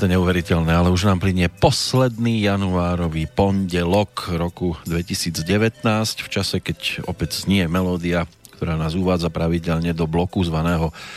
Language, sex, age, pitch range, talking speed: Slovak, male, 40-59, 90-115 Hz, 125 wpm